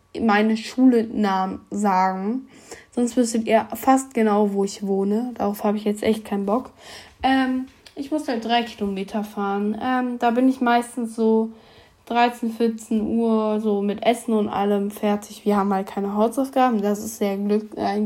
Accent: German